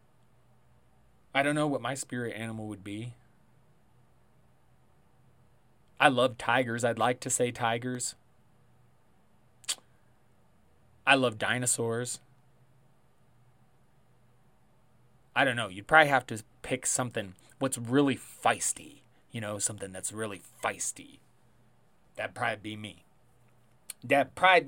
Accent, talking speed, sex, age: American, 105 wpm, male, 30-49